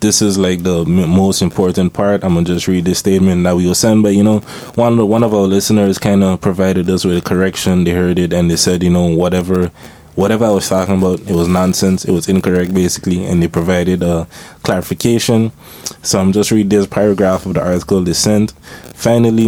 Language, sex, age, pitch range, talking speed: English, male, 20-39, 90-100 Hz, 225 wpm